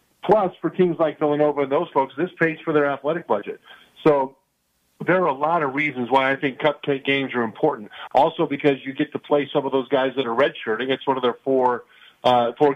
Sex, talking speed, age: male, 225 wpm, 50-69